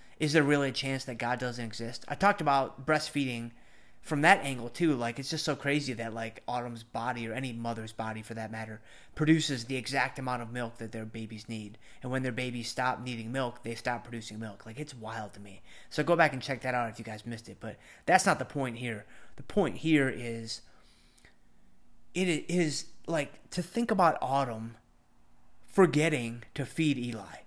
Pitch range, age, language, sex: 115-155 Hz, 30-49, English, male